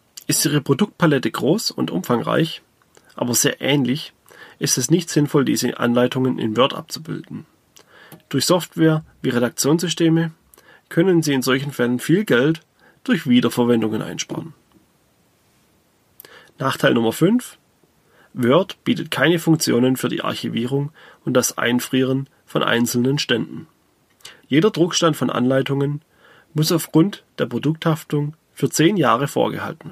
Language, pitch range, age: German, 125-160 Hz, 30-49